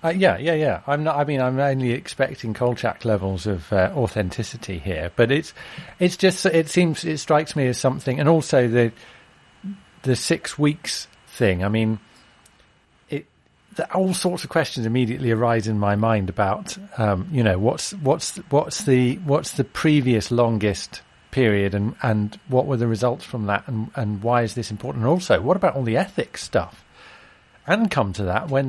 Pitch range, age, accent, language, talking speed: 105-145 Hz, 40-59, British, English, 185 wpm